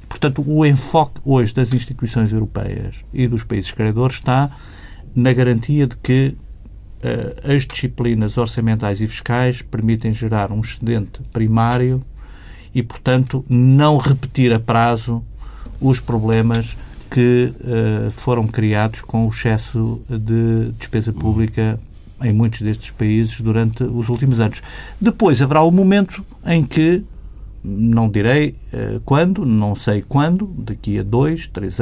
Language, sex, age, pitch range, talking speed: Portuguese, male, 50-69, 110-140 Hz, 125 wpm